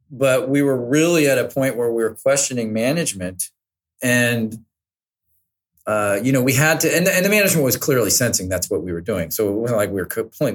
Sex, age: male, 40-59